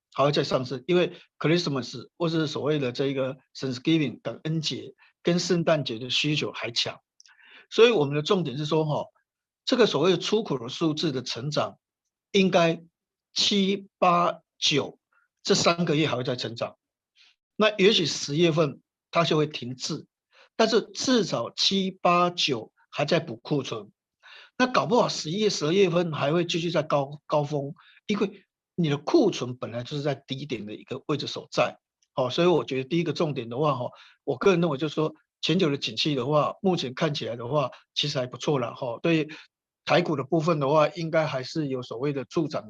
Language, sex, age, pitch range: Chinese, male, 50-69, 140-175 Hz